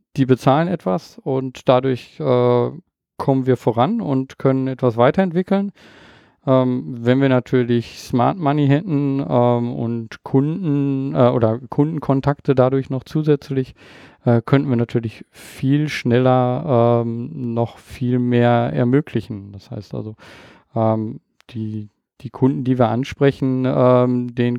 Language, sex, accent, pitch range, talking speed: German, male, German, 120-140 Hz, 125 wpm